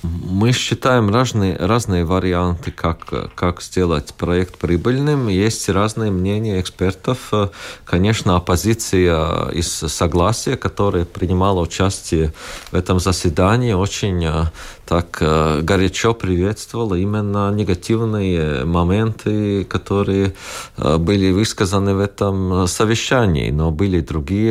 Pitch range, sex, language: 85-105 Hz, male, Russian